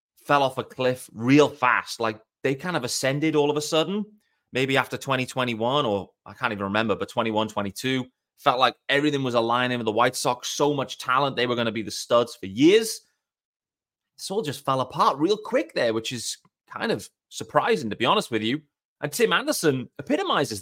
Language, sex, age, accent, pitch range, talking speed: English, male, 30-49, British, 125-195 Hz, 200 wpm